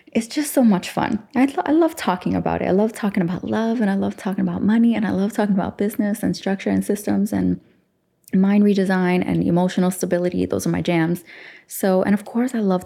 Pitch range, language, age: 160-205 Hz, English, 20-39